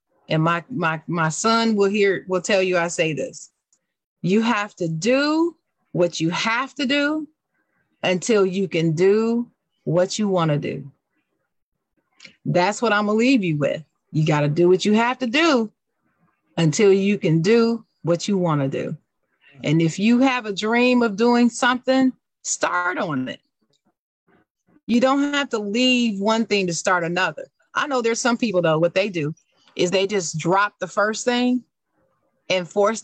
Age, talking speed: 40-59, 175 wpm